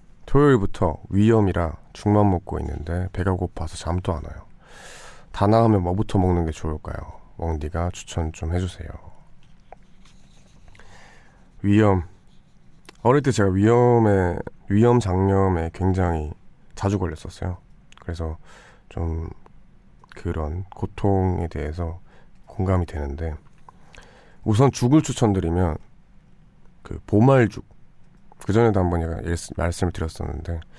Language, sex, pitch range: Korean, male, 80-105 Hz